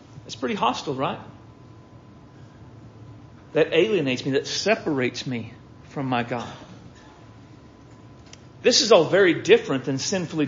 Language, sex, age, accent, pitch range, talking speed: English, male, 40-59, American, 120-160 Hz, 115 wpm